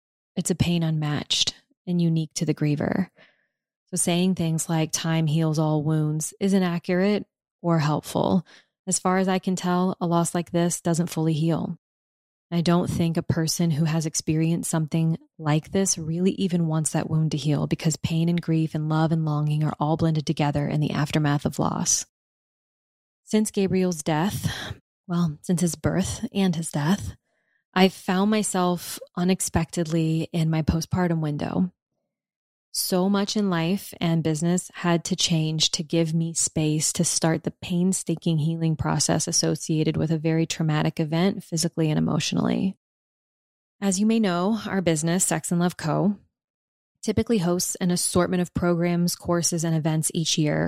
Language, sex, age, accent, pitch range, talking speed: English, female, 20-39, American, 160-180 Hz, 160 wpm